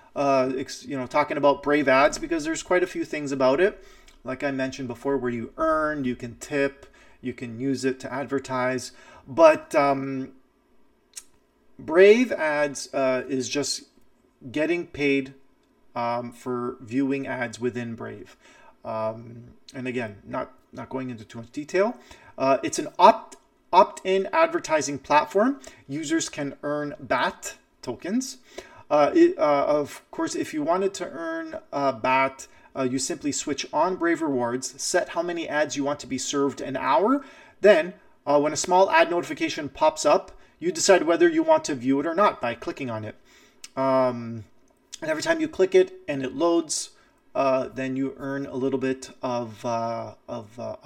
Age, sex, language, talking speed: 30-49, male, English, 165 wpm